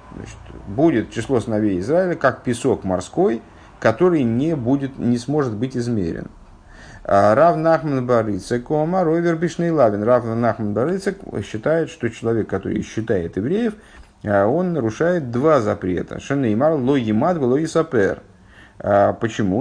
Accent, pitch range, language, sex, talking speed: native, 105-145 Hz, Russian, male, 90 wpm